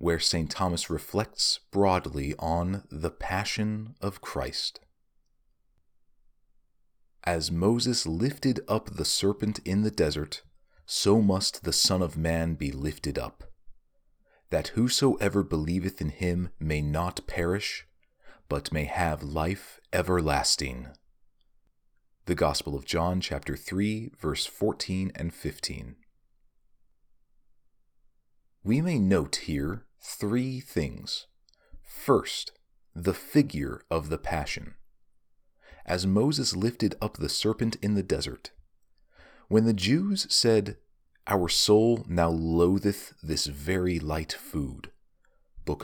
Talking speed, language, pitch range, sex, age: 110 wpm, English, 80-105 Hz, male, 30-49